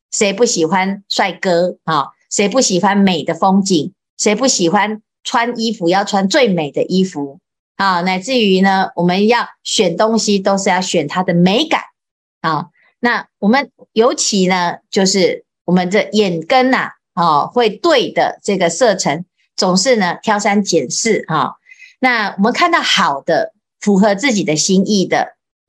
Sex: female